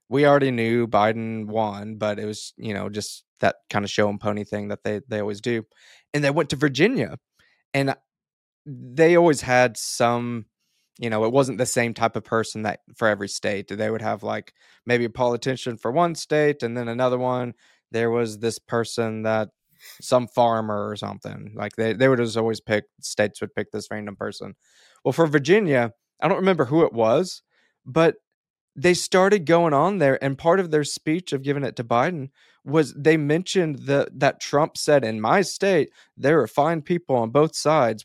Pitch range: 110-145 Hz